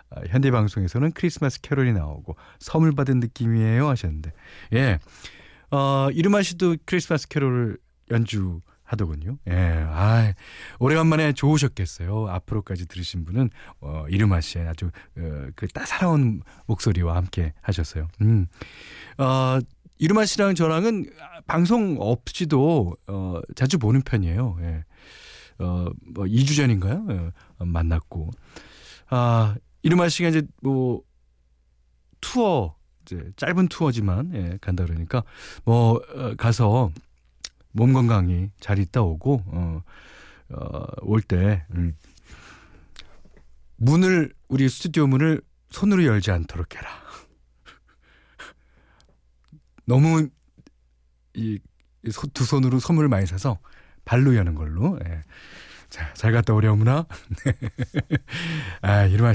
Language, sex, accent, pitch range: Korean, male, native, 85-135 Hz